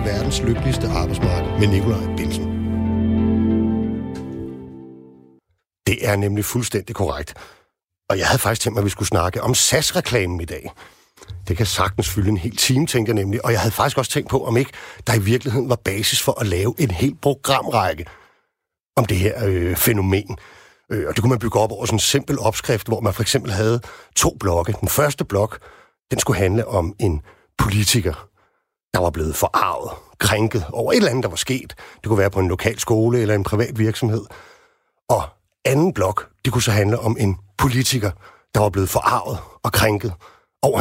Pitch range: 100-120 Hz